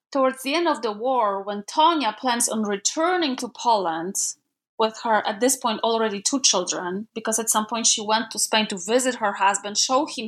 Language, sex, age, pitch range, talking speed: English, female, 20-39, 200-255 Hz, 205 wpm